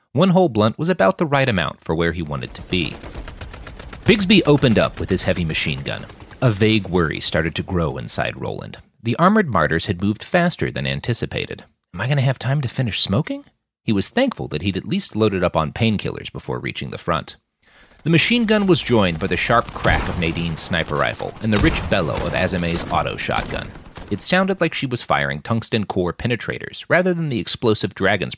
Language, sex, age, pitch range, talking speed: English, male, 40-59, 85-145 Hz, 205 wpm